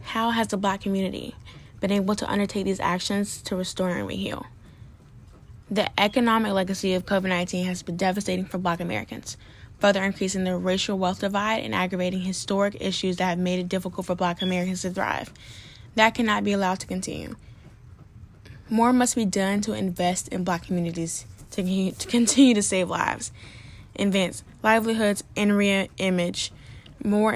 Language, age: English, 10-29